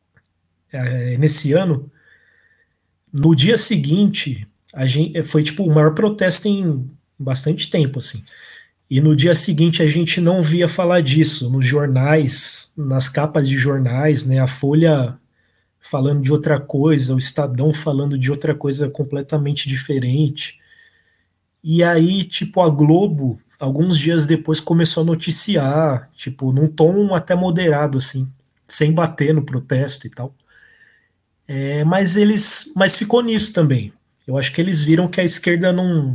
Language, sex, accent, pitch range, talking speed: Portuguese, male, Brazilian, 135-160 Hz, 145 wpm